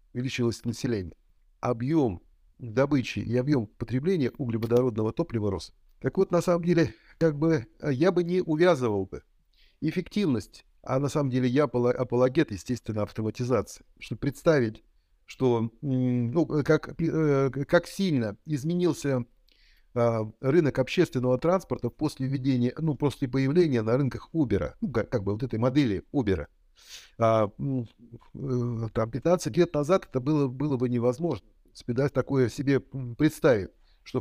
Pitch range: 115-150 Hz